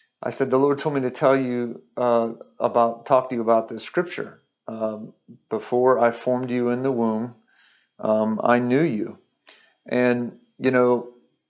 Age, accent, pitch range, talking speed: 50-69, American, 115-135 Hz, 165 wpm